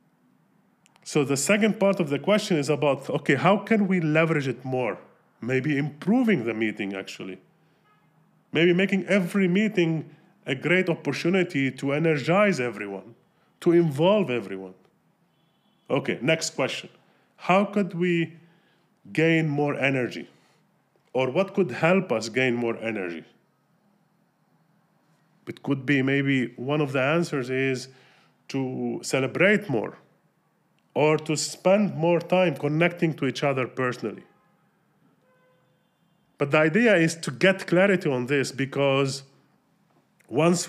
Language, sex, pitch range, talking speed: English, male, 135-180 Hz, 125 wpm